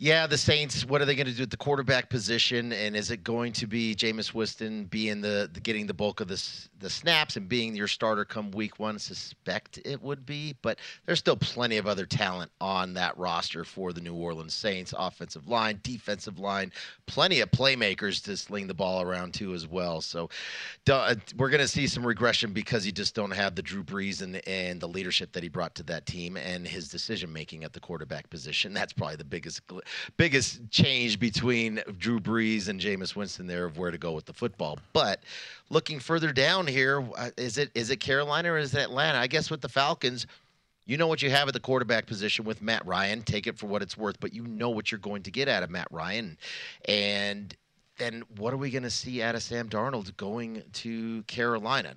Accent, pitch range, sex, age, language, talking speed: American, 105-125 Hz, male, 30-49, English, 215 wpm